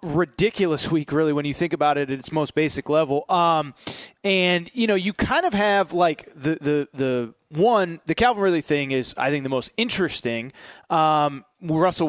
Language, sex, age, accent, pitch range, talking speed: English, male, 30-49, American, 150-200 Hz, 190 wpm